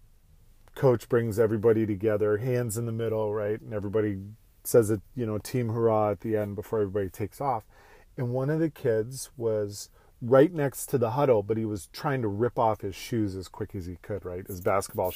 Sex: male